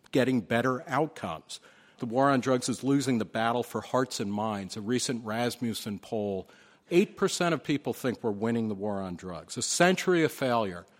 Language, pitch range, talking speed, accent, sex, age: English, 115-150 Hz, 180 wpm, American, male, 50-69